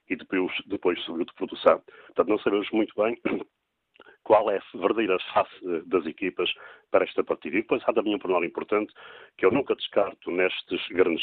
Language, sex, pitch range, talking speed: Portuguese, male, 345-455 Hz, 180 wpm